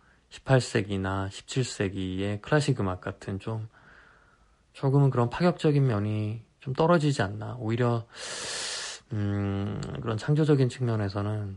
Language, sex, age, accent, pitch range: Korean, male, 20-39, native, 105-125 Hz